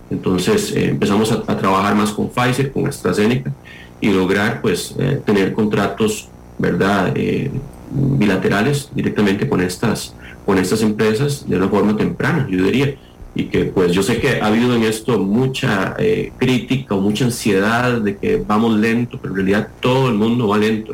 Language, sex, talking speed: Spanish, male, 170 wpm